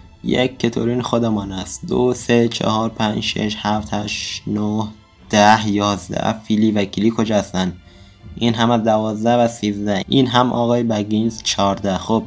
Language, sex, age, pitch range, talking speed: Persian, male, 20-39, 100-110 Hz, 155 wpm